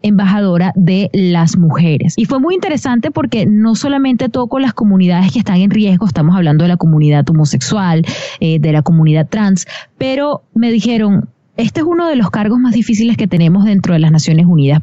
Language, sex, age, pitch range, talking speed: Spanish, female, 20-39, 190-240 Hz, 190 wpm